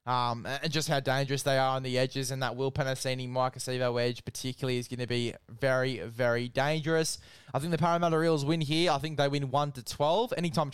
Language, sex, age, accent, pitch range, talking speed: English, male, 10-29, Australian, 125-150 Hz, 205 wpm